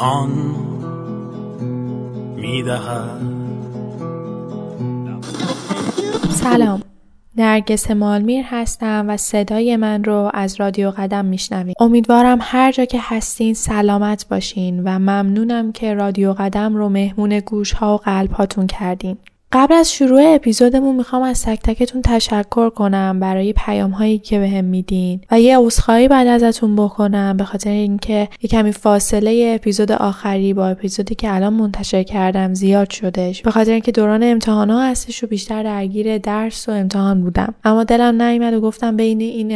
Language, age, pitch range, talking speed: Persian, 10-29, 195-225 Hz, 140 wpm